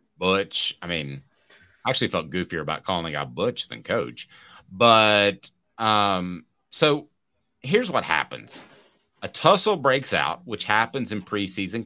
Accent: American